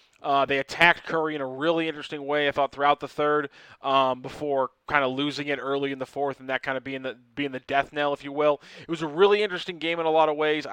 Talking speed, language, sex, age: 270 wpm, English, male, 20-39